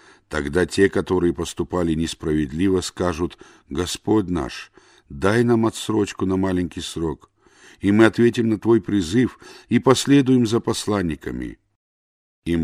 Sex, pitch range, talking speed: male, 80-115 Hz, 120 wpm